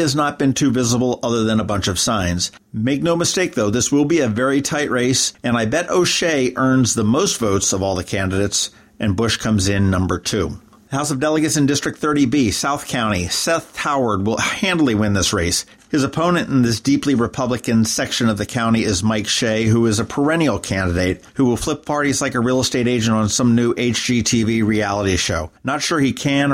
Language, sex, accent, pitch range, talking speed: English, male, American, 110-140 Hz, 210 wpm